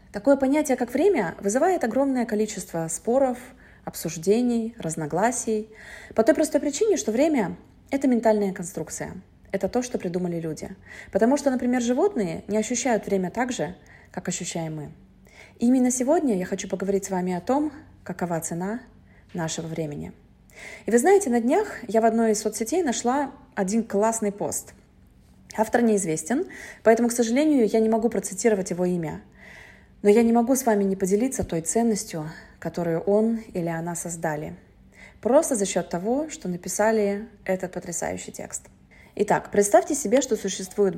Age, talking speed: 20-39, 150 wpm